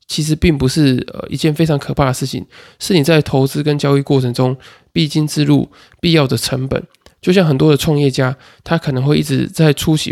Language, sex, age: Chinese, male, 20-39